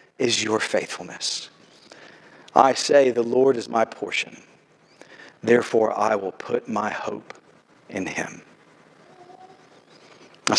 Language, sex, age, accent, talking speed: English, male, 50-69, American, 110 wpm